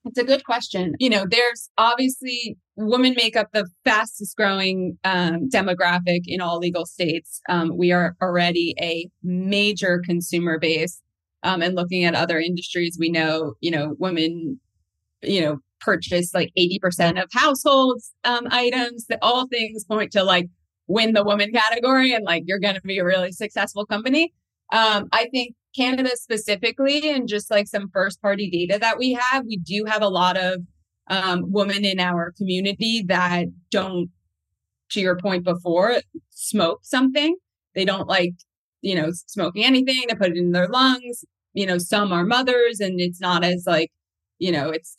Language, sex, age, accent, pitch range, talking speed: English, female, 20-39, American, 175-225 Hz, 170 wpm